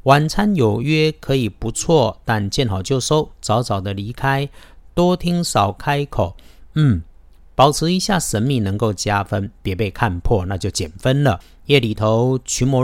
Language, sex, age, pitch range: Chinese, male, 50-69, 100-135 Hz